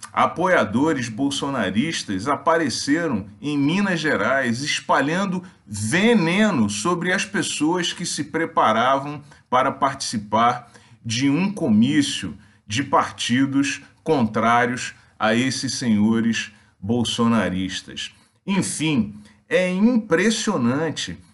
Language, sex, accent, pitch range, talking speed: Portuguese, male, Brazilian, 115-190 Hz, 80 wpm